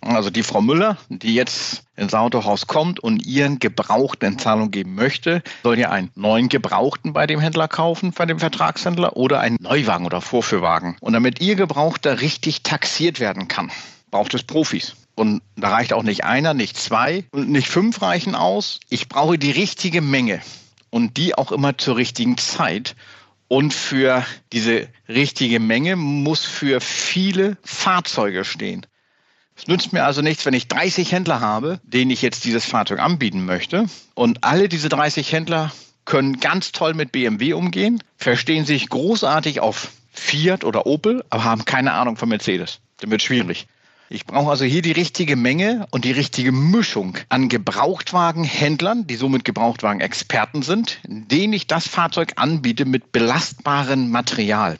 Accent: German